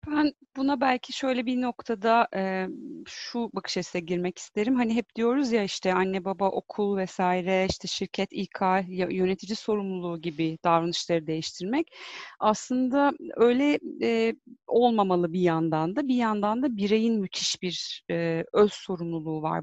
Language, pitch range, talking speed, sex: Turkish, 180-225 Hz, 130 wpm, female